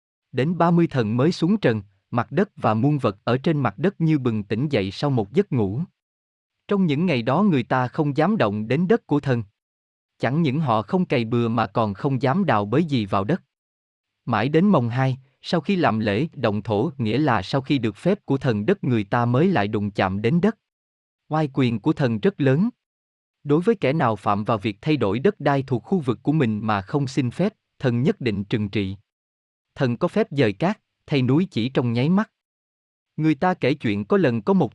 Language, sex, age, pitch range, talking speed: Vietnamese, male, 20-39, 110-160 Hz, 225 wpm